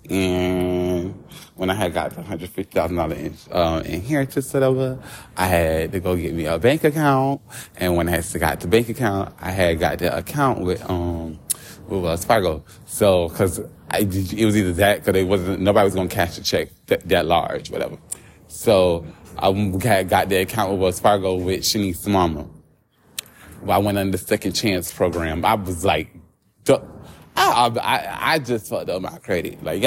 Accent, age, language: American, 30-49, English